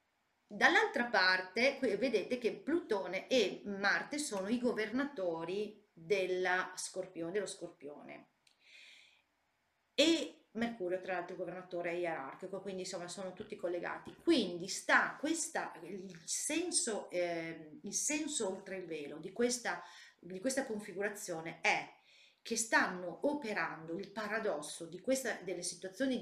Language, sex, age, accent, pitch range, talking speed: Italian, female, 40-59, native, 175-220 Hz, 120 wpm